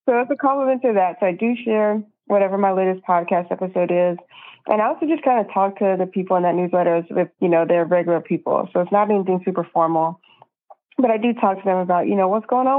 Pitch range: 170-195 Hz